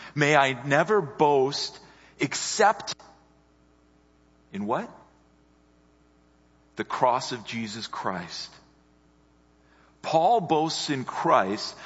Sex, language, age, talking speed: male, English, 50-69, 80 wpm